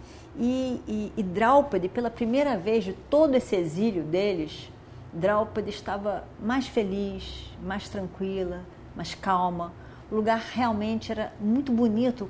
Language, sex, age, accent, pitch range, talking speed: Portuguese, female, 40-59, Brazilian, 205-280 Hz, 125 wpm